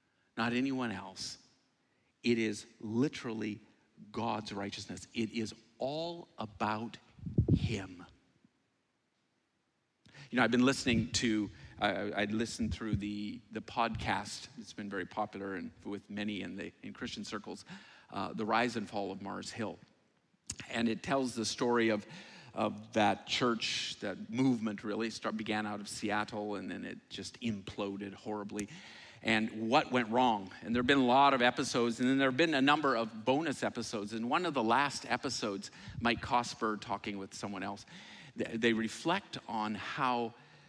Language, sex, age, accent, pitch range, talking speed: English, male, 50-69, American, 105-125 Hz, 160 wpm